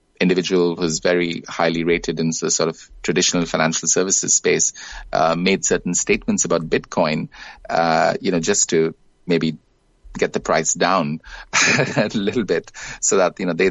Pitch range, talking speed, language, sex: 80-90 Hz, 160 wpm, English, male